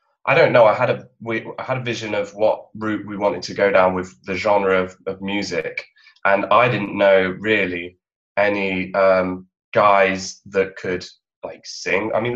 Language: English